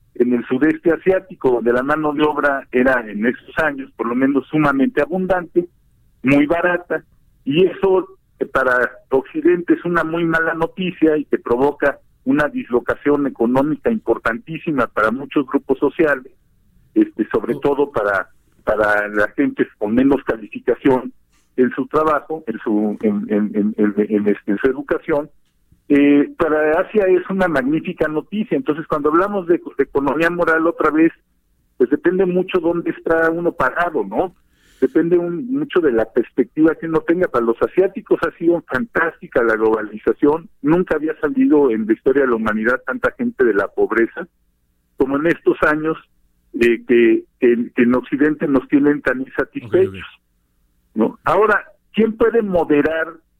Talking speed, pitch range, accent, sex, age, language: 155 wpm, 125-180 Hz, Mexican, male, 50-69, Spanish